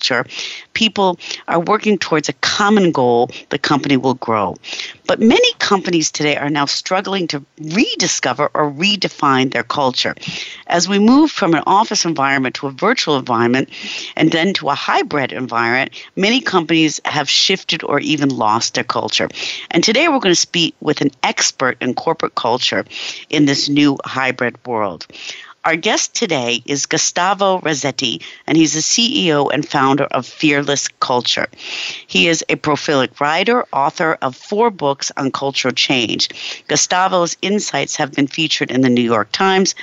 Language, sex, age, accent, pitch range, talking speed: English, female, 50-69, American, 135-180 Hz, 155 wpm